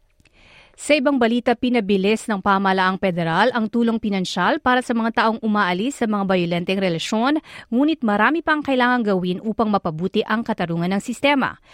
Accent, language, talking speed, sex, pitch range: native, Filipino, 160 wpm, female, 185-245 Hz